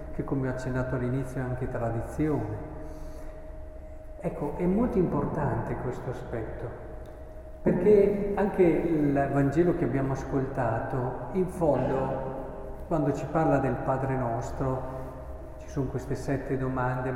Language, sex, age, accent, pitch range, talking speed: Italian, male, 50-69, native, 130-180 Hz, 120 wpm